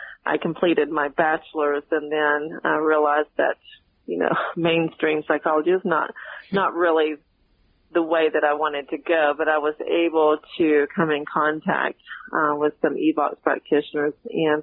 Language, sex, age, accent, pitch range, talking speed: English, female, 40-59, American, 150-165 Hz, 155 wpm